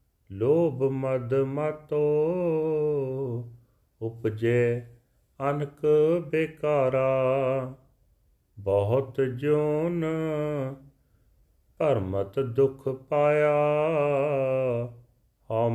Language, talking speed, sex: Punjabi, 45 wpm, male